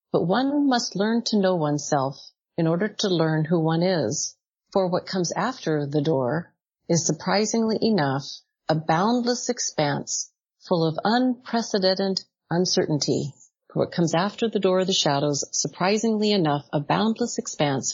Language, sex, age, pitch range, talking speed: English, female, 40-59, 155-195 Hz, 145 wpm